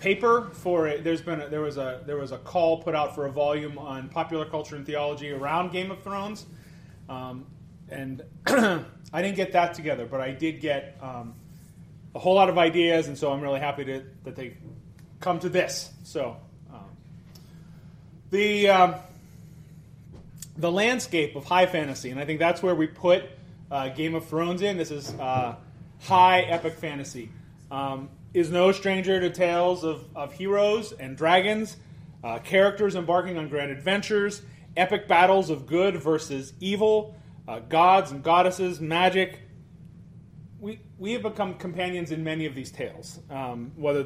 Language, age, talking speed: English, 30-49, 165 wpm